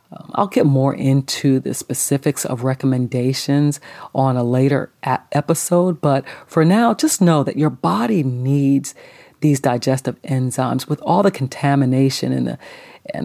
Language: English